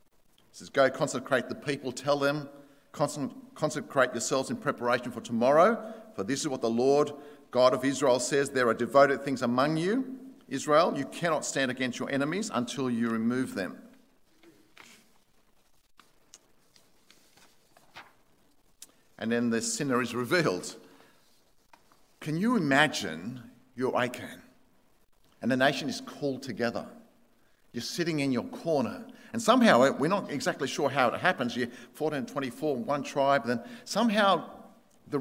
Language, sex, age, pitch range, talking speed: English, male, 50-69, 120-190 Hz, 140 wpm